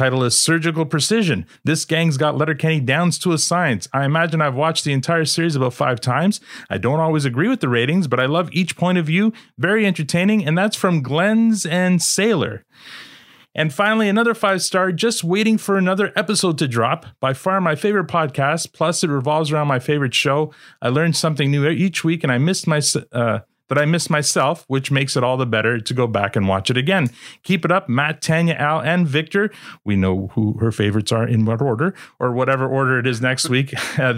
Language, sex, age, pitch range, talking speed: English, male, 30-49, 120-165 Hz, 210 wpm